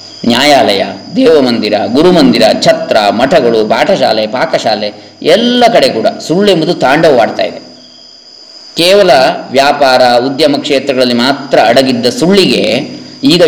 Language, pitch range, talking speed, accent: English, 130-205 Hz, 110 wpm, Indian